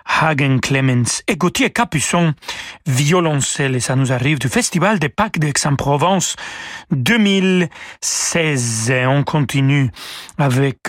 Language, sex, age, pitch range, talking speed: French, male, 40-59, 135-180 Hz, 110 wpm